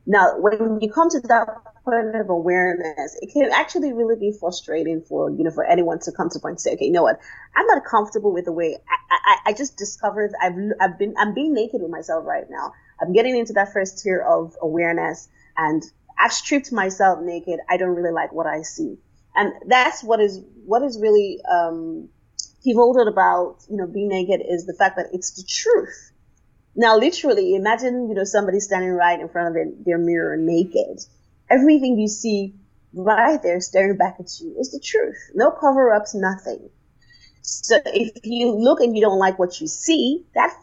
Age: 30-49